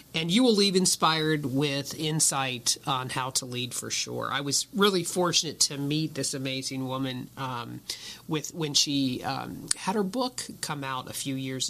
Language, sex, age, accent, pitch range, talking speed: English, male, 40-59, American, 130-160 Hz, 180 wpm